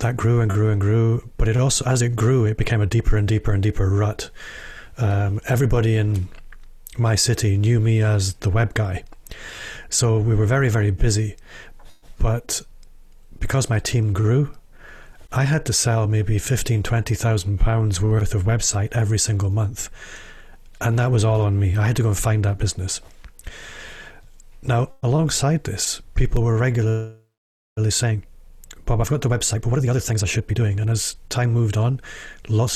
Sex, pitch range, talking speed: male, 105-120 Hz, 180 wpm